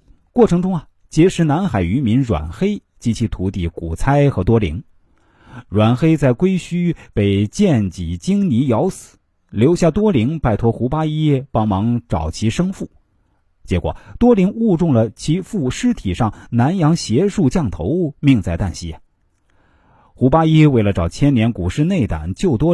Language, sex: Chinese, male